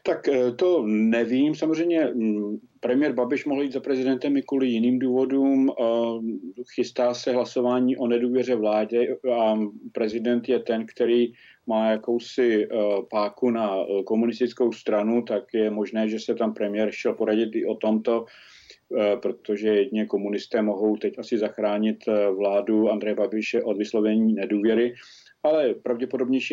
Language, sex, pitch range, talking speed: Czech, male, 105-120 Hz, 130 wpm